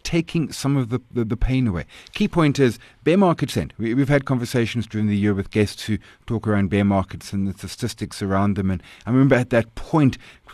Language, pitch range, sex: English, 100-130 Hz, male